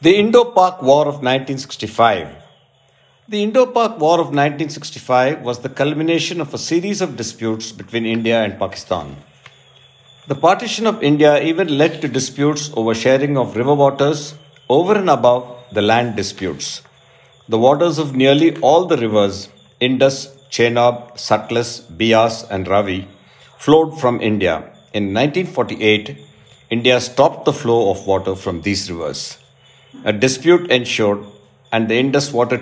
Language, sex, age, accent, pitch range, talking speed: English, male, 50-69, Indian, 110-140 Hz, 140 wpm